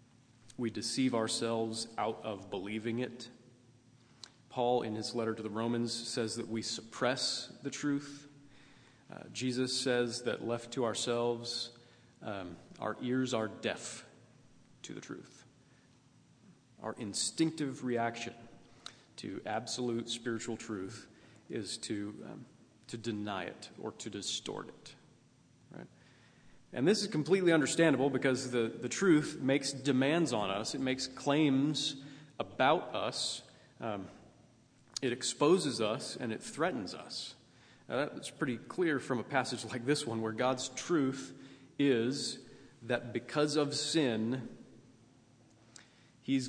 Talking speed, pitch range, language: 125 wpm, 115-135 Hz, English